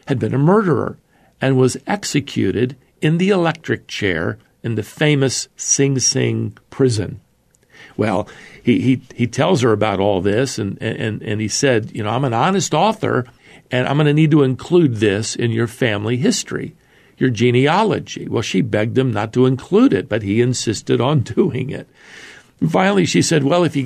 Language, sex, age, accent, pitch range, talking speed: English, male, 50-69, American, 120-150 Hz, 180 wpm